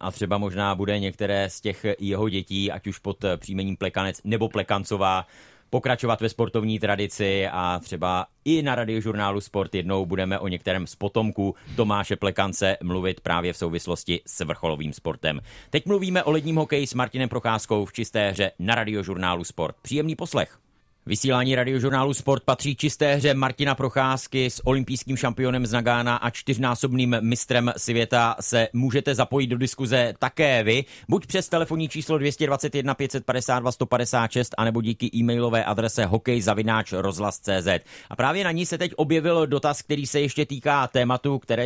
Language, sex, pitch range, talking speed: Czech, male, 100-140 Hz, 155 wpm